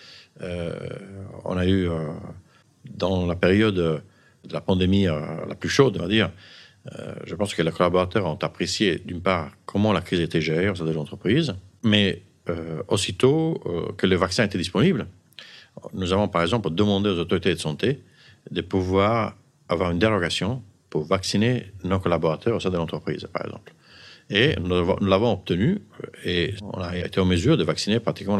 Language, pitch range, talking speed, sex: French, 80-100 Hz, 175 wpm, male